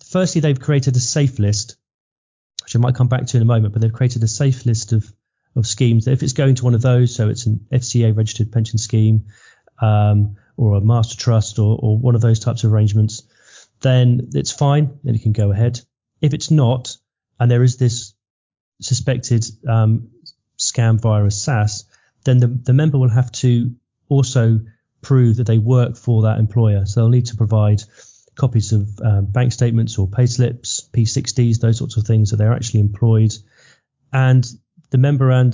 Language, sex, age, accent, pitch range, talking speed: English, male, 30-49, British, 110-125 Hz, 185 wpm